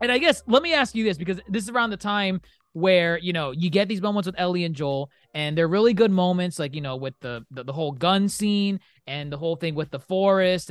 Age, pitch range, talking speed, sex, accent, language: 20-39, 145-195 Hz, 265 wpm, male, American, English